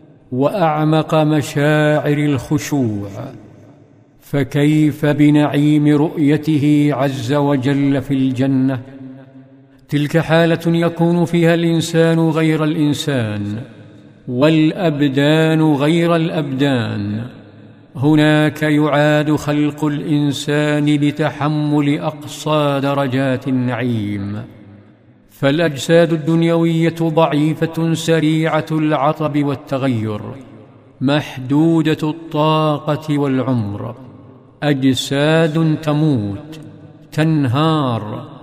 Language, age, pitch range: Arabic, 50-69, 135-155 Hz